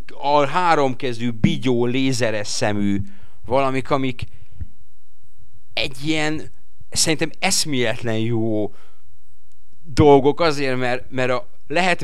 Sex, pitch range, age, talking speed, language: male, 100-130 Hz, 30-49, 85 wpm, Hungarian